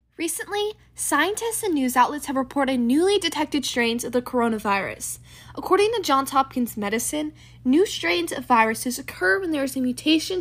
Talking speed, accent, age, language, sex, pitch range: 160 wpm, American, 10-29, English, female, 240-325 Hz